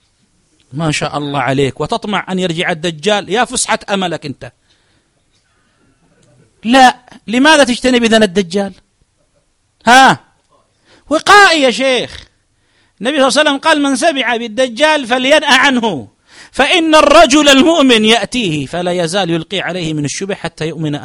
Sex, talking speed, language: male, 125 wpm, Arabic